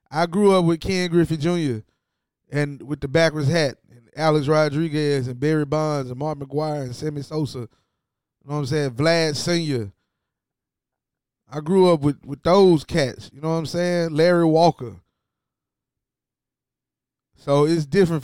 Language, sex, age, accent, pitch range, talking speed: English, male, 20-39, American, 125-155 Hz, 160 wpm